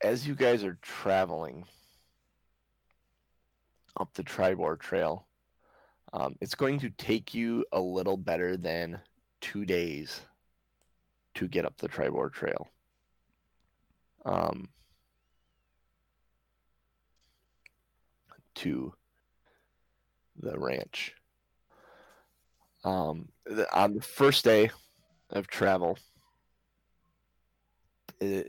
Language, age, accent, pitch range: English, 30-49, American, 65-100 Hz